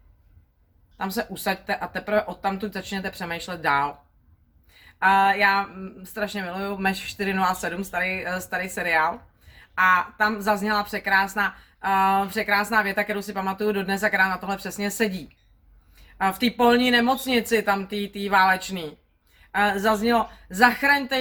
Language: Czech